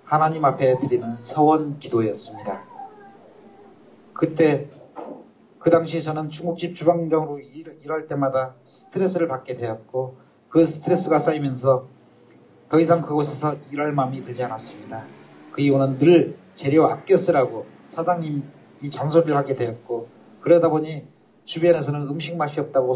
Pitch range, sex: 130-165 Hz, male